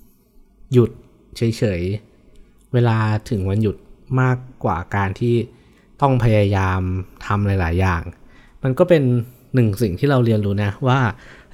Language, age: Thai, 20-39